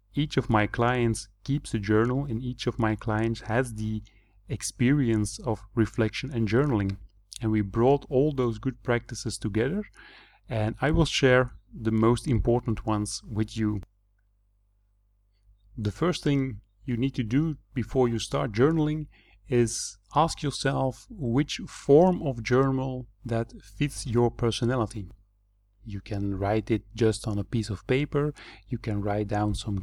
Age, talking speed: 30-49, 150 wpm